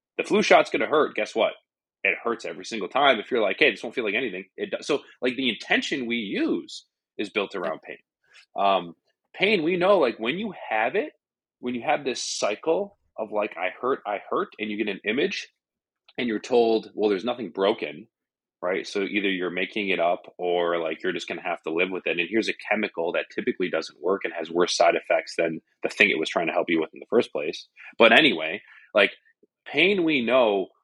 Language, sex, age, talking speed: English, male, 30-49, 225 wpm